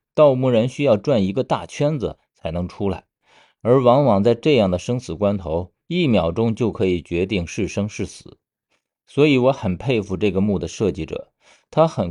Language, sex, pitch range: Chinese, male, 95-130 Hz